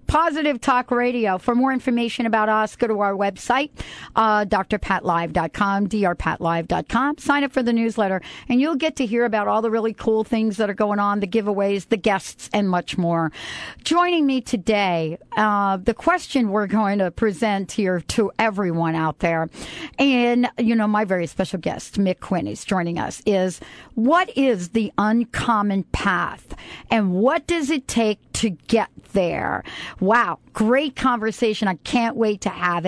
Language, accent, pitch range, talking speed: English, American, 200-245 Hz, 165 wpm